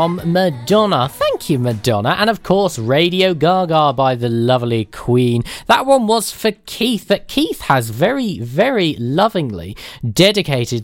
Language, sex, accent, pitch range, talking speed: English, male, British, 110-185 Hz, 140 wpm